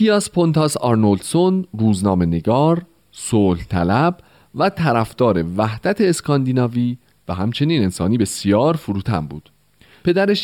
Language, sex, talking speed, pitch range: Persian, male, 110 wpm, 100-155 Hz